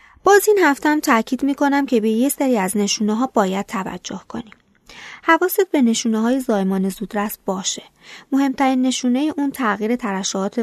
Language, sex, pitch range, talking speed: Persian, female, 200-245 Hz, 160 wpm